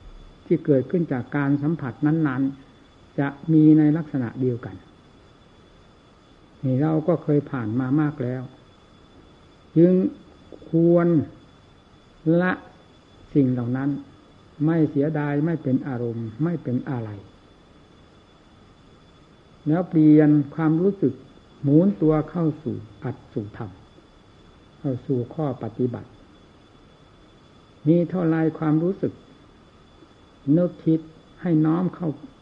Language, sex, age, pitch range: Thai, male, 60-79, 120-155 Hz